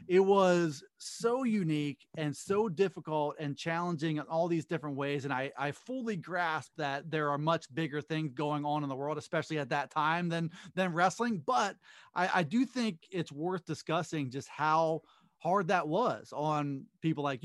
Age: 30-49